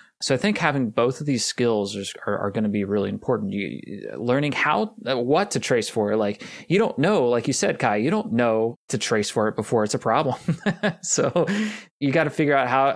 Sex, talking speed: male, 225 wpm